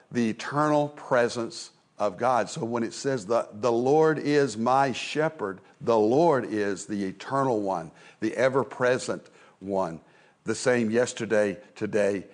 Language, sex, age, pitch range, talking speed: English, male, 60-79, 105-135 Hz, 135 wpm